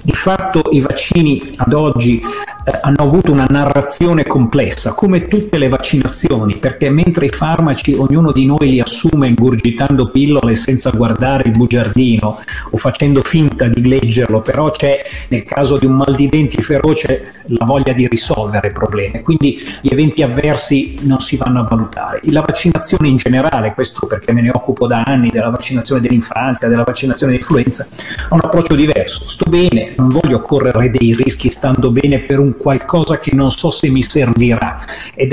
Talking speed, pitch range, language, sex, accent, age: 170 wpm, 125-150 Hz, Italian, male, native, 40-59